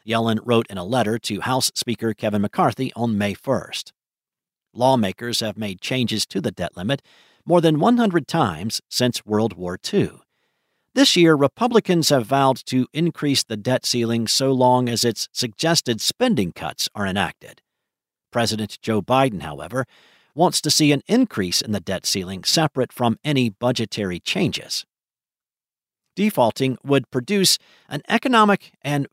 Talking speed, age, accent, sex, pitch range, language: 150 wpm, 50-69, American, male, 115-155 Hz, English